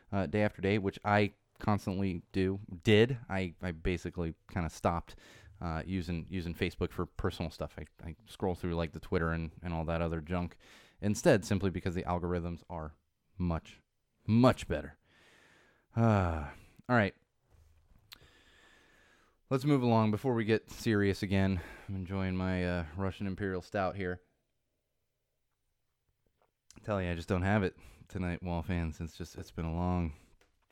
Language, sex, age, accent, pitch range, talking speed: English, male, 20-39, American, 90-115 Hz, 155 wpm